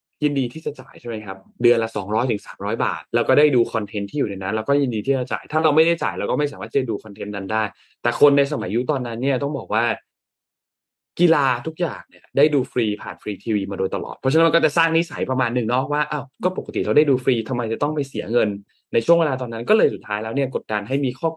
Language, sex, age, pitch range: Thai, male, 20-39, 110-150 Hz